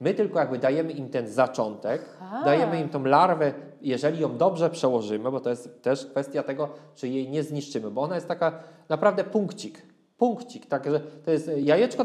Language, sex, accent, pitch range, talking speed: Polish, male, native, 130-165 Hz, 185 wpm